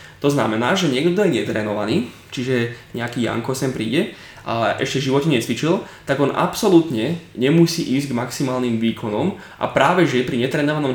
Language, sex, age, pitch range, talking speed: Slovak, male, 20-39, 115-145 Hz, 160 wpm